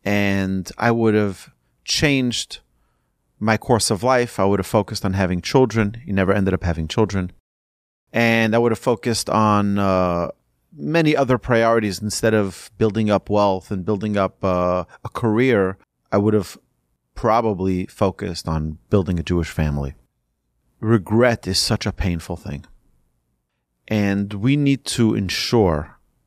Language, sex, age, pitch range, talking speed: English, male, 30-49, 85-115 Hz, 145 wpm